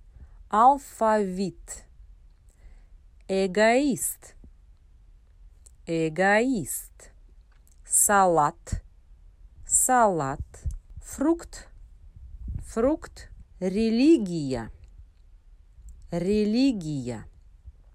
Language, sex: Spanish, female